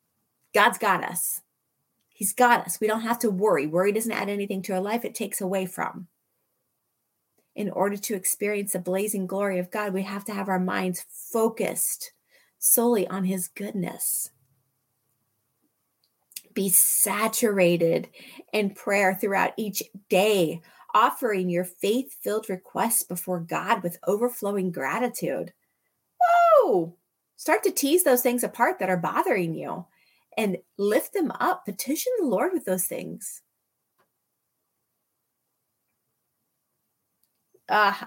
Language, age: English, 30-49